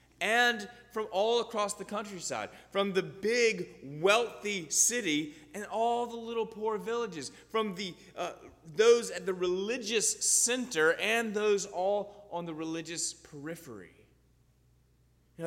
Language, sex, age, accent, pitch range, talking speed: English, male, 30-49, American, 145-210 Hz, 130 wpm